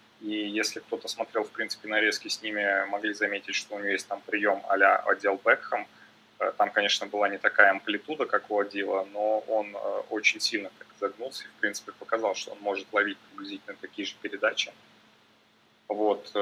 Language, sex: Russian, male